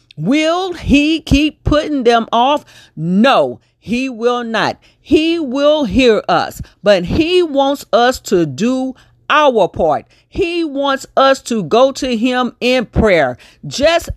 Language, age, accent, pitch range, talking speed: English, 40-59, American, 205-280 Hz, 135 wpm